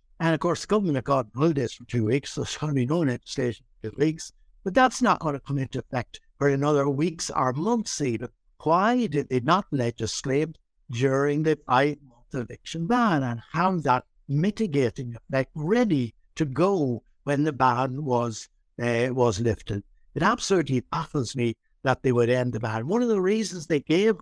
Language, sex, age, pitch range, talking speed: English, male, 60-79, 125-165 Hz, 190 wpm